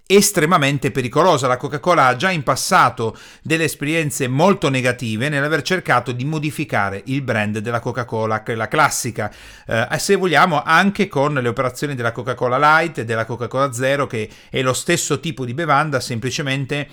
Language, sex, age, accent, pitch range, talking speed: Italian, male, 40-59, native, 115-160 Hz, 175 wpm